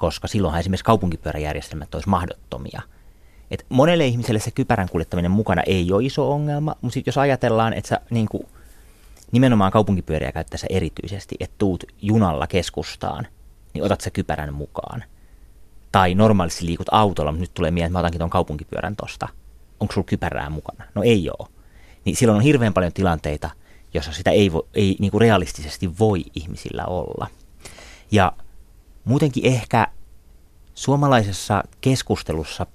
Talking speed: 145 wpm